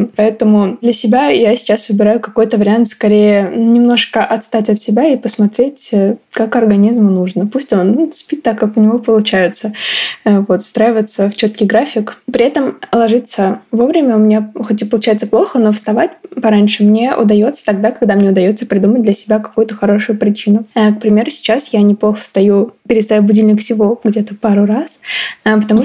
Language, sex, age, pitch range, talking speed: Russian, female, 20-39, 210-230 Hz, 160 wpm